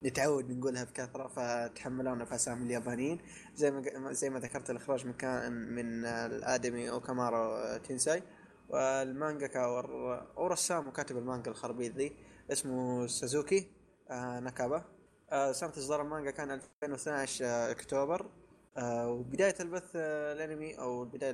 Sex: male